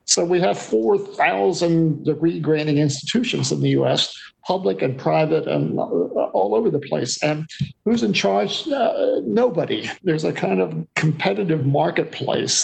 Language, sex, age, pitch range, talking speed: English, male, 50-69, 130-165 Hz, 140 wpm